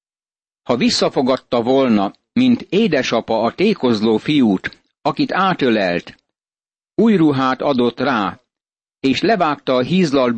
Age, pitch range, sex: 60-79, 125-160 Hz, male